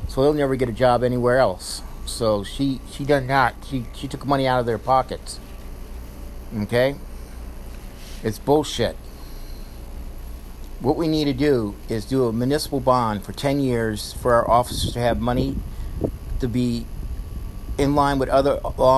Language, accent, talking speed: English, American, 160 wpm